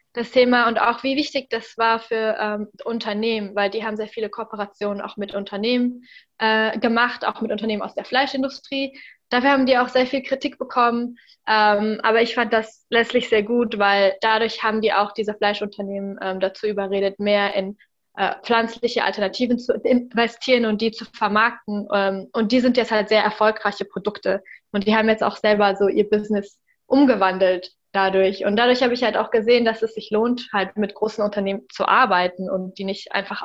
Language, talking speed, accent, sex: German, 190 wpm, German, female